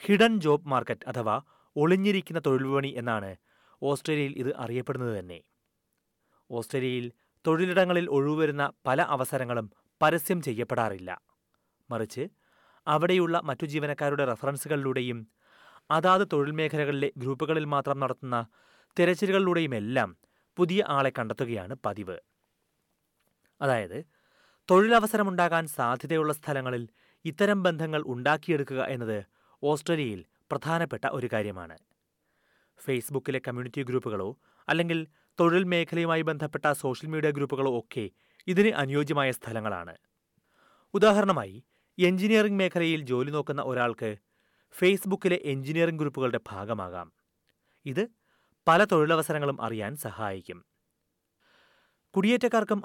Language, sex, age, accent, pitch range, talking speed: Malayalam, male, 30-49, native, 125-170 Hz, 85 wpm